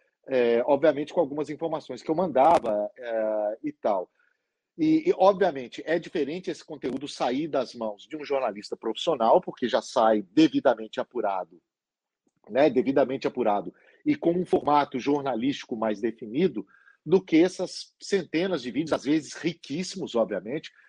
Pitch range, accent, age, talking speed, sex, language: 130-175 Hz, Brazilian, 40-59, 140 wpm, male, Portuguese